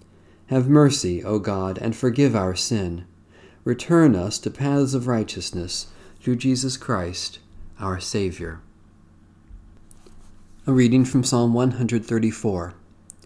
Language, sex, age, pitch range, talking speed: English, male, 40-59, 95-130 Hz, 110 wpm